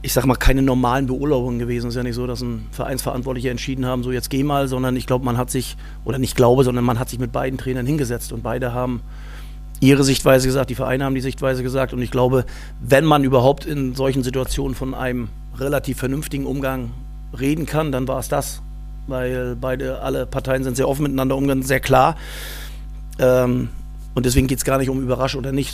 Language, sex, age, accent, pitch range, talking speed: German, male, 40-59, German, 125-135 Hz, 210 wpm